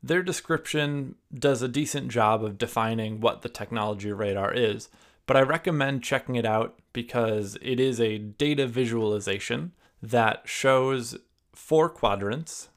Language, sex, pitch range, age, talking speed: English, male, 110-135 Hz, 20-39, 135 wpm